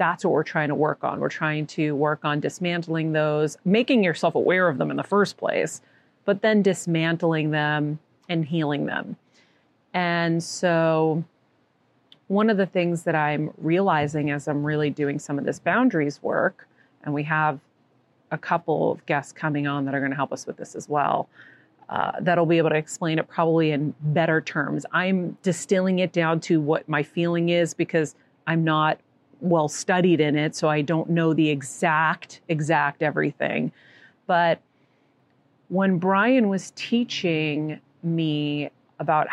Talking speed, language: 165 wpm, English